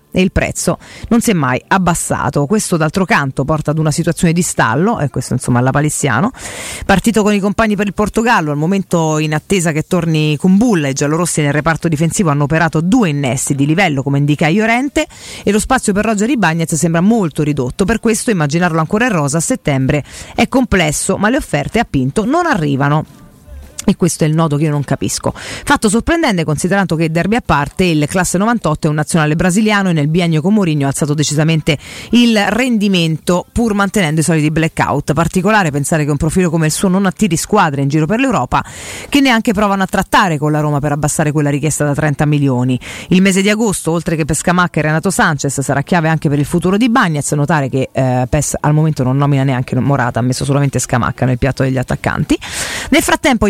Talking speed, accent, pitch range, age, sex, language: 205 wpm, native, 150-205 Hz, 40-59, female, Italian